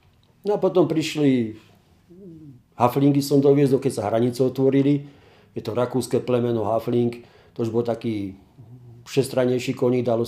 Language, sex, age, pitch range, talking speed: Slovak, male, 50-69, 110-135 Hz, 135 wpm